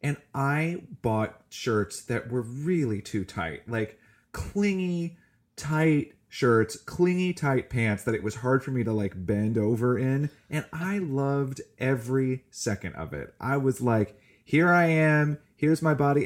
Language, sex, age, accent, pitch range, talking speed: English, male, 30-49, American, 110-150 Hz, 160 wpm